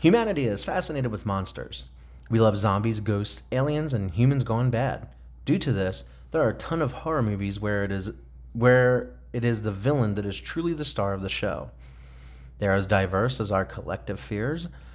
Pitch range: 95-120 Hz